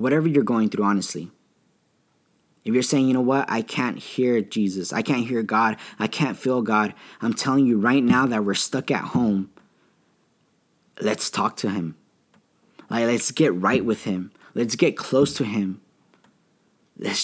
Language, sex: English, male